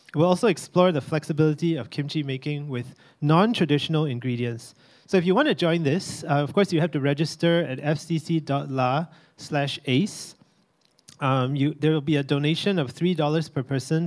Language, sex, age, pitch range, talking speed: English, male, 30-49, 135-170 Hz, 165 wpm